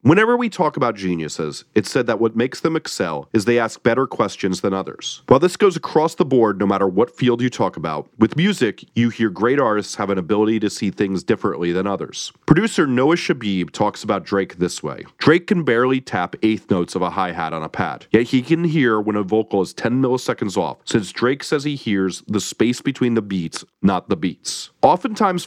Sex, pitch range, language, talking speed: male, 100-150 Hz, English, 215 wpm